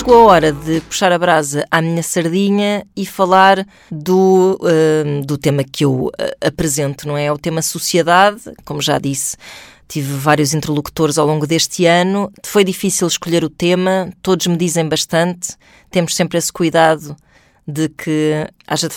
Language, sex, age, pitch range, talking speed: Portuguese, female, 20-39, 155-190 Hz, 160 wpm